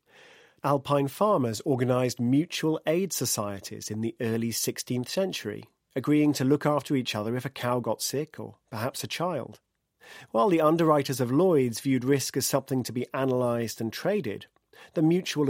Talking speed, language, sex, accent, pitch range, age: 165 wpm, English, male, British, 120-160 Hz, 40-59